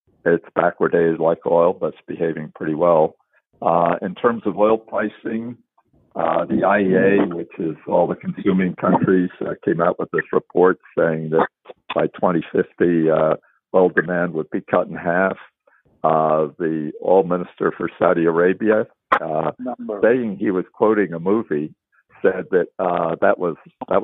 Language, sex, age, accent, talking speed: English, male, 60-79, American, 150 wpm